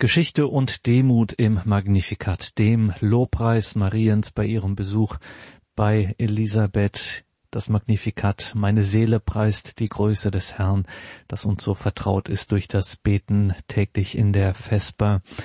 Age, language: 40-59, German